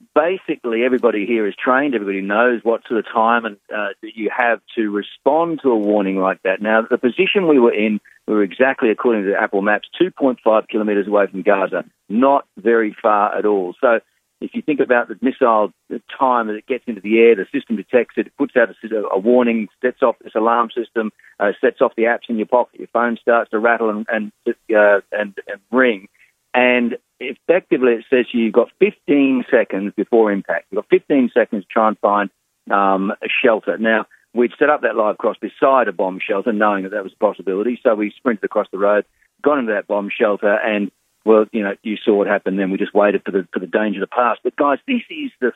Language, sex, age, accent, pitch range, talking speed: English, male, 40-59, Australian, 105-125 Hz, 220 wpm